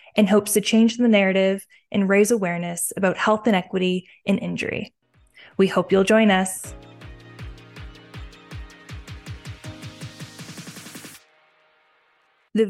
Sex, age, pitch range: female, 10-29, 170-210 Hz